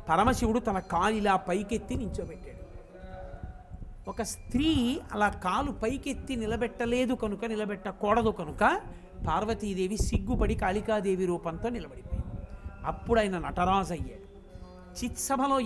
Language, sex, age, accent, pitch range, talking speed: Telugu, male, 50-69, native, 175-240 Hz, 95 wpm